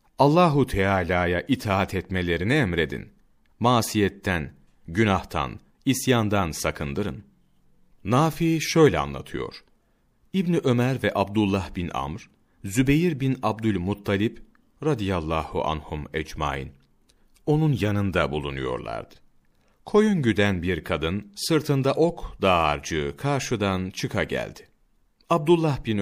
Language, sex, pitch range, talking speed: Turkish, male, 90-130 Hz, 90 wpm